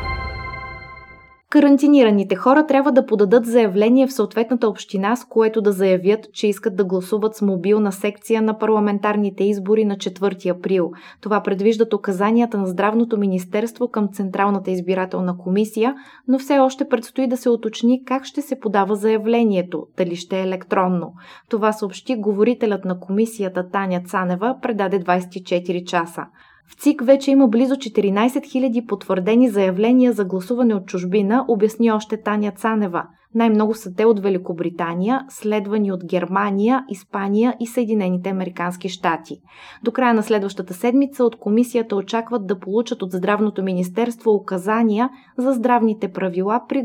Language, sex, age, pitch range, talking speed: Bulgarian, female, 20-39, 190-235 Hz, 140 wpm